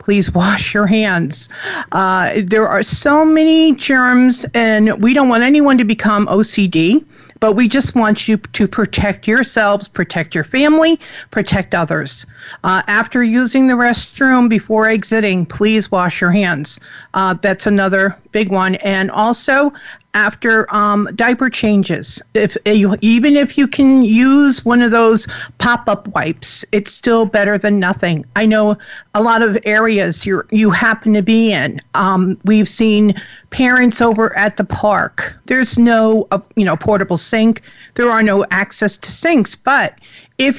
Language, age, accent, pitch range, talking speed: English, 50-69, American, 195-235 Hz, 155 wpm